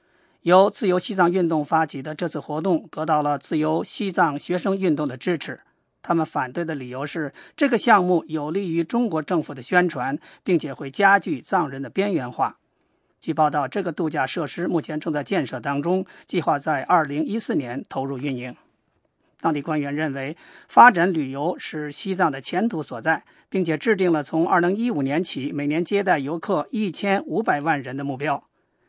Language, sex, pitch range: English, male, 150-195 Hz